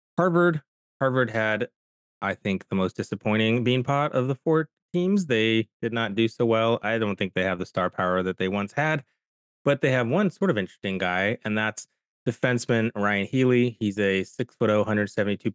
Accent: American